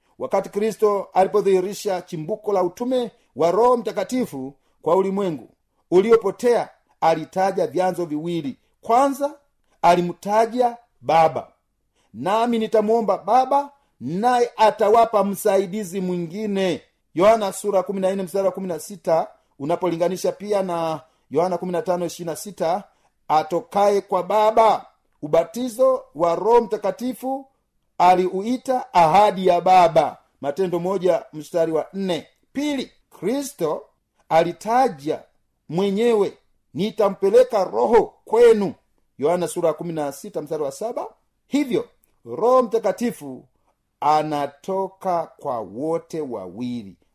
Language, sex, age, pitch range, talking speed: Swahili, male, 40-59, 175-240 Hz, 90 wpm